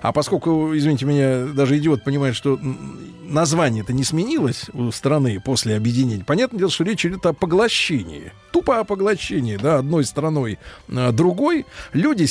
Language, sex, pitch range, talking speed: Russian, male, 120-165 Hz, 150 wpm